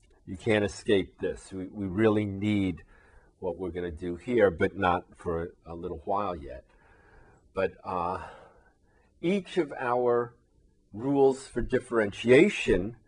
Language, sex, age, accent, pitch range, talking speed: English, male, 50-69, American, 95-110 Hz, 140 wpm